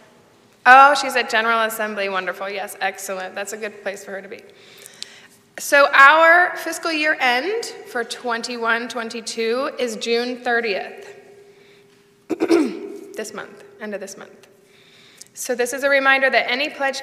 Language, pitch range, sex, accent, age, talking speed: English, 195-235 Hz, female, American, 20-39, 140 wpm